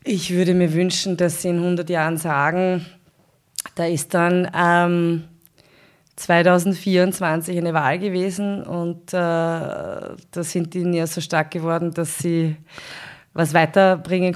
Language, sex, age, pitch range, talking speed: German, female, 20-39, 165-185 Hz, 130 wpm